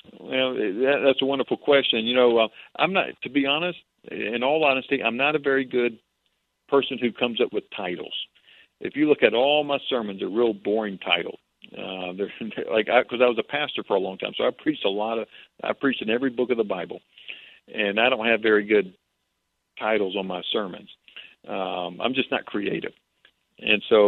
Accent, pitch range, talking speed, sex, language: American, 105-135 Hz, 210 wpm, male, English